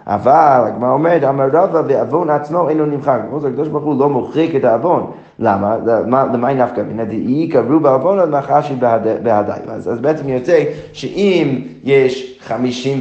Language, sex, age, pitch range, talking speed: Hebrew, male, 30-49, 125-155 Hz, 165 wpm